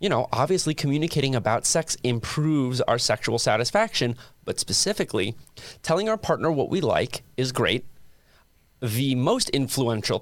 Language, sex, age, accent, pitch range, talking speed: English, male, 30-49, American, 115-145 Hz, 135 wpm